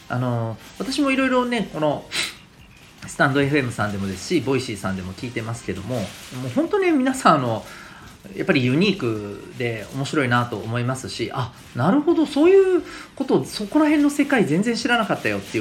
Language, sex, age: Japanese, male, 40-59